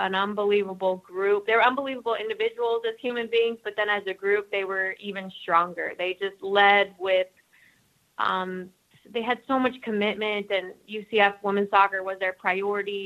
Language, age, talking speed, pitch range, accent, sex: English, 20-39, 165 wpm, 190-220 Hz, American, female